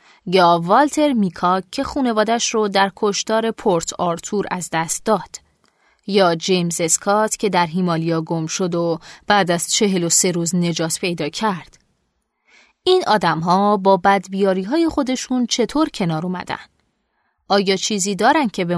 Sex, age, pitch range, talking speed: female, 30-49, 180-235 Hz, 145 wpm